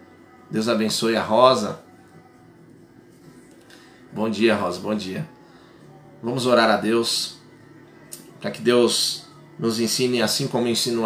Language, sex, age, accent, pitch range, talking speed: Portuguese, male, 20-39, Brazilian, 110-125 Hz, 115 wpm